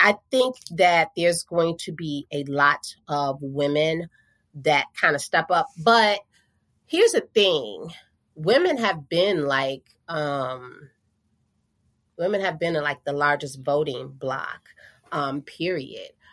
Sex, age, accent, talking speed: female, 30-49, American, 130 wpm